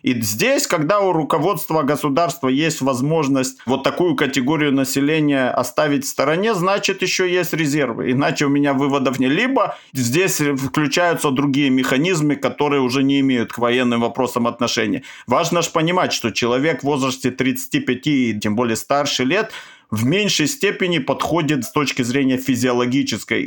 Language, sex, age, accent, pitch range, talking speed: Russian, male, 50-69, native, 130-155 Hz, 145 wpm